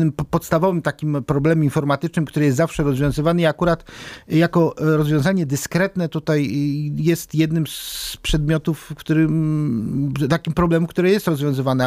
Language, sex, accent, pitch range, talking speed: Polish, male, native, 150-190 Hz, 120 wpm